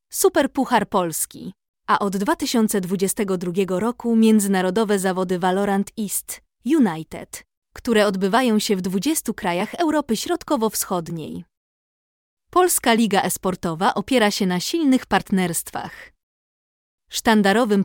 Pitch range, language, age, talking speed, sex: 195-245 Hz, Polish, 20-39, 95 wpm, female